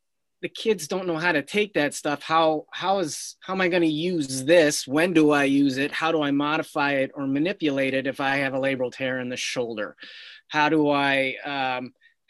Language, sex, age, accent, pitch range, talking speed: English, male, 30-49, American, 135-160 Hz, 220 wpm